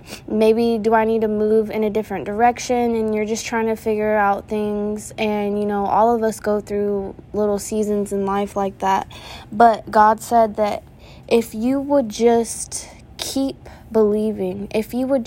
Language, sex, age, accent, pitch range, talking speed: English, female, 10-29, American, 210-235 Hz, 175 wpm